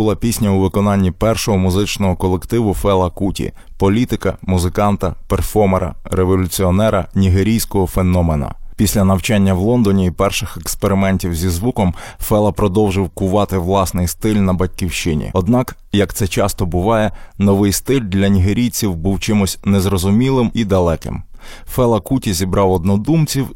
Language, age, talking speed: Ukrainian, 20-39, 125 wpm